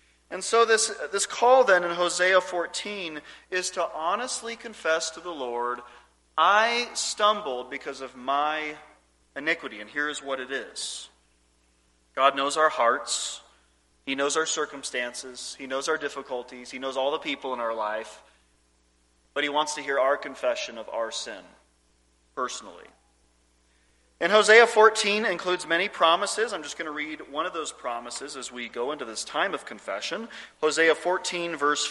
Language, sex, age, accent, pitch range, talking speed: English, male, 30-49, American, 105-170 Hz, 160 wpm